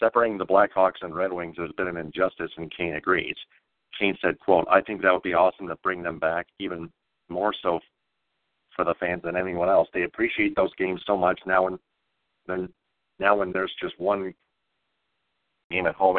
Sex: male